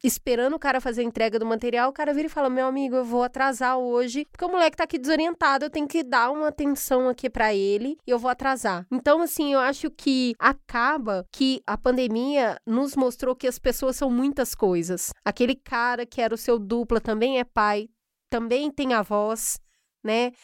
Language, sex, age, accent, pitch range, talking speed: English, female, 20-39, Brazilian, 230-275 Hz, 205 wpm